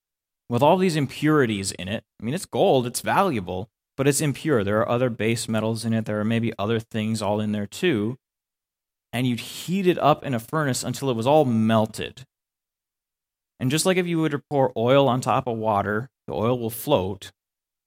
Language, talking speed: English, 205 wpm